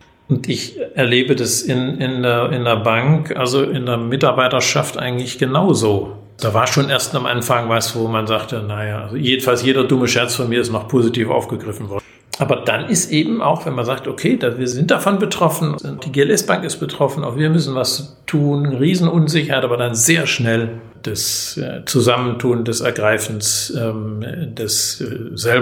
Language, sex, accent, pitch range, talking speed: German, male, German, 115-140 Hz, 165 wpm